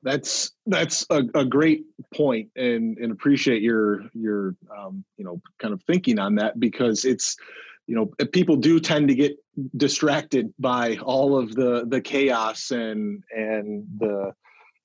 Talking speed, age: 155 wpm, 30-49